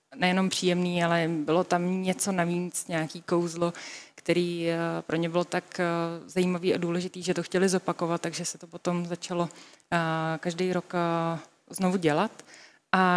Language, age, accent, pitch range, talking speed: Czech, 20-39, native, 170-185 Hz, 140 wpm